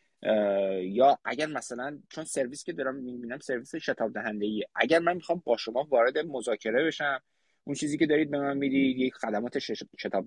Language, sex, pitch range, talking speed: Persian, male, 110-145 Hz, 170 wpm